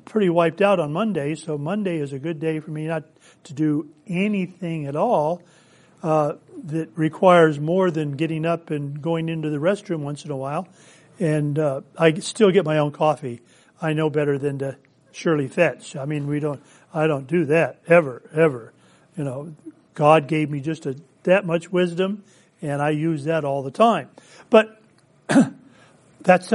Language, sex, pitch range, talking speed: English, male, 150-200 Hz, 180 wpm